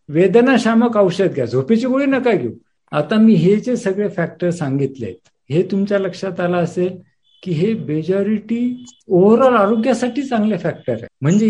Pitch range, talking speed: 150-190 Hz, 115 wpm